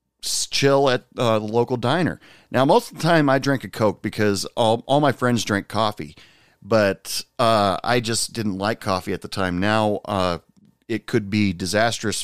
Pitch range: 100-120 Hz